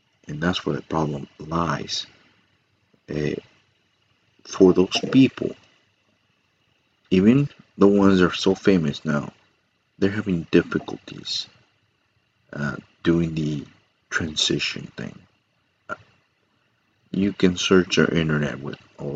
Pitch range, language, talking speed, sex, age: 80-100 Hz, English, 105 wpm, male, 50-69